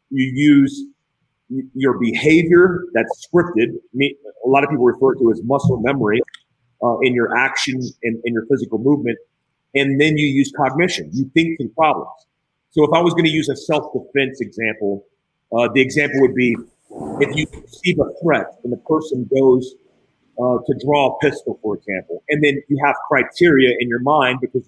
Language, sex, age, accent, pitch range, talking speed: English, male, 40-59, American, 130-160 Hz, 185 wpm